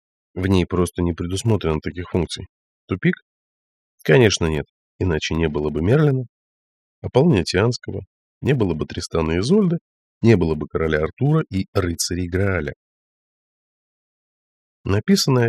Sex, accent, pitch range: male, native, 85-115 Hz